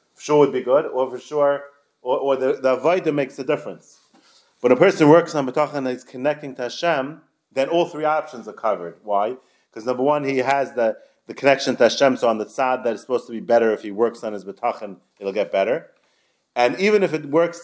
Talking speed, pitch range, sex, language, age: 230 wpm, 125-160 Hz, male, English, 30-49